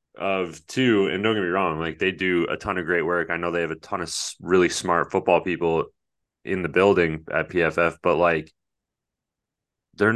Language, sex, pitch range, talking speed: English, male, 90-115 Hz, 200 wpm